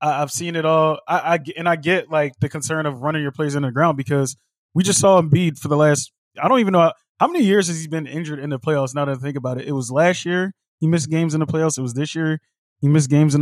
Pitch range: 140-165 Hz